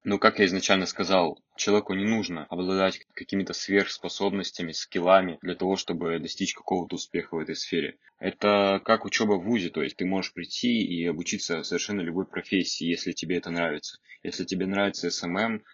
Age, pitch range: 20-39, 85-100 Hz